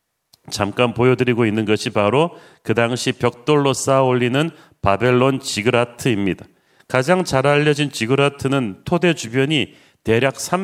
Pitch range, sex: 115-145 Hz, male